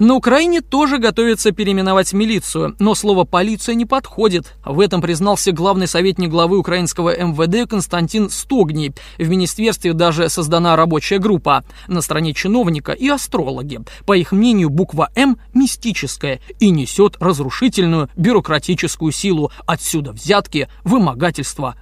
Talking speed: 125 wpm